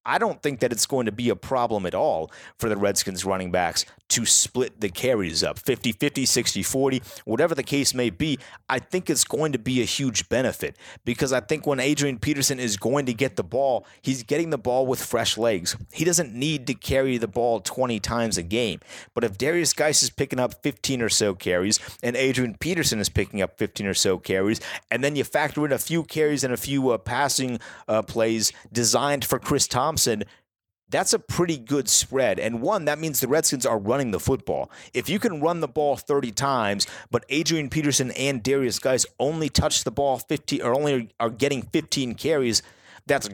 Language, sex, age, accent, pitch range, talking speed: English, male, 30-49, American, 115-145 Hz, 205 wpm